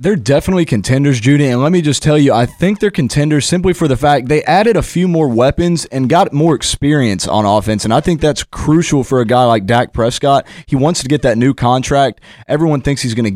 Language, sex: English, male